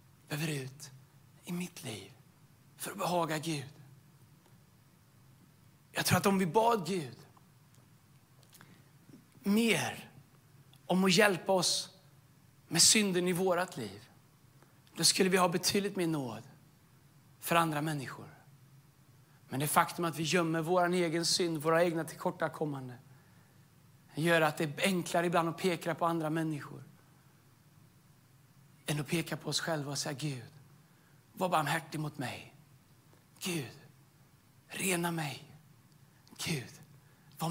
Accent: native